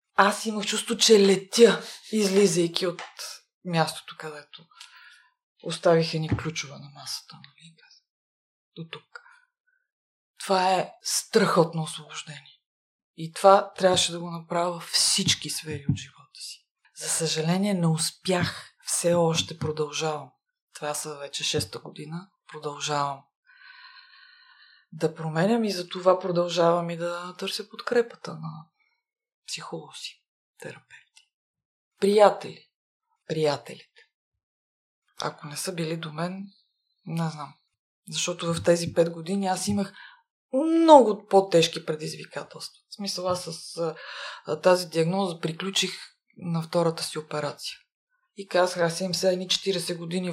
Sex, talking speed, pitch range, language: female, 110 wpm, 160-205 Hz, Bulgarian